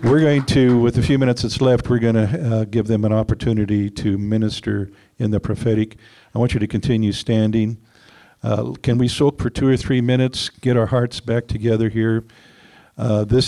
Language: English